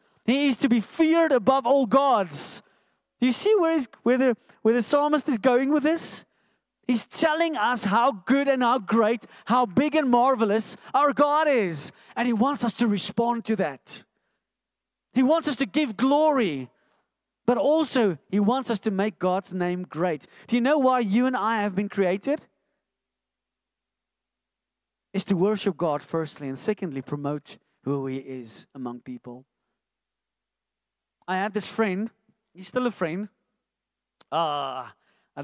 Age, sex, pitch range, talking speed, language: 30-49, male, 190-250 Hz, 155 wpm, English